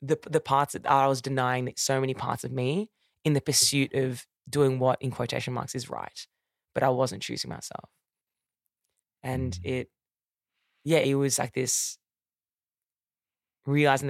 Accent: Australian